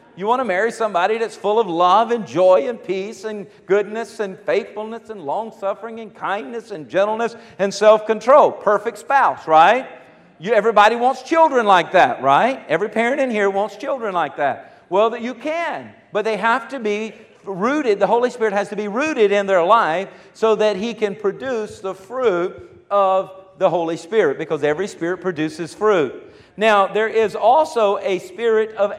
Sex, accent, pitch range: male, American, 185-230 Hz